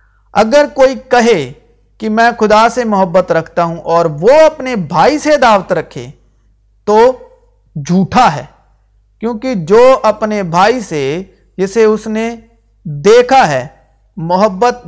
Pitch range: 170-225 Hz